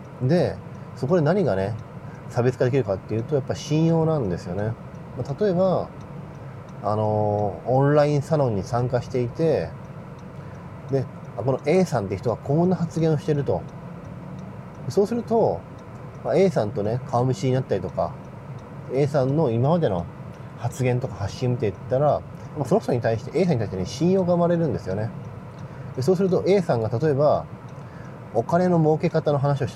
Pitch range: 125-160 Hz